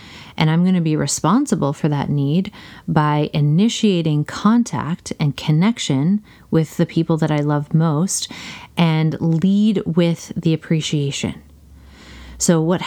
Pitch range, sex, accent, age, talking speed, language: 150-195 Hz, female, American, 30-49, 130 wpm, English